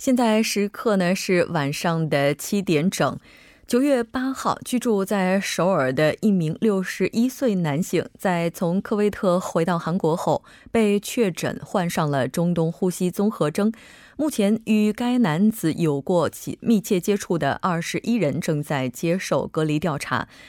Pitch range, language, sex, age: 160-210 Hz, Korean, female, 20-39